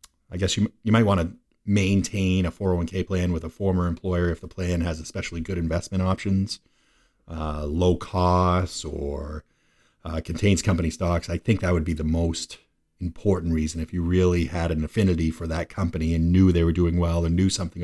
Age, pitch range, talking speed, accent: 30-49, 85-105 Hz, 195 wpm, American